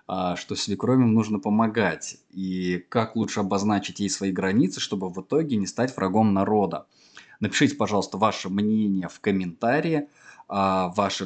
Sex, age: male, 20-39